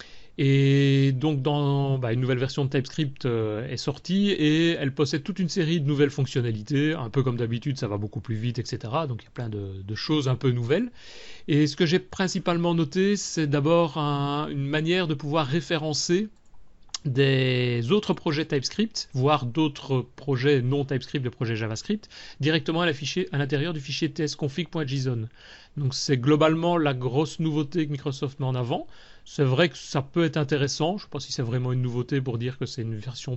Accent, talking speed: French, 195 wpm